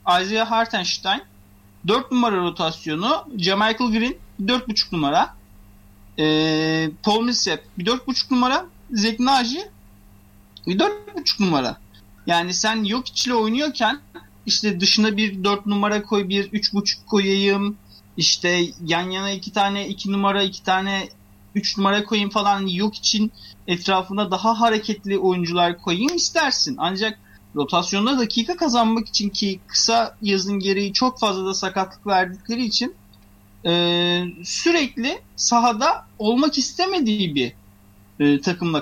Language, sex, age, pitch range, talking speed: Turkish, male, 30-49, 170-225 Hz, 115 wpm